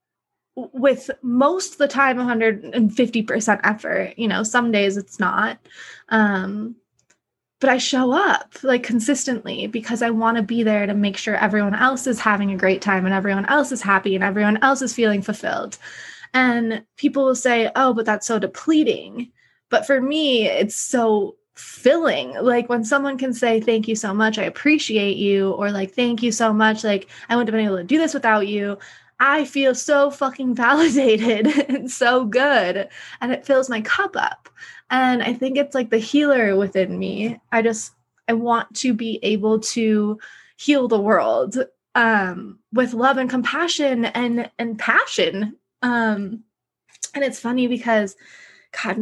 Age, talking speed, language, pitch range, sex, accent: 20-39, 170 wpm, English, 215-260 Hz, female, American